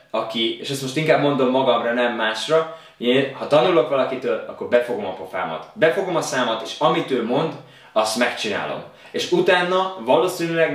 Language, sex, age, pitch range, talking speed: Hungarian, male, 20-39, 120-145 Hz, 160 wpm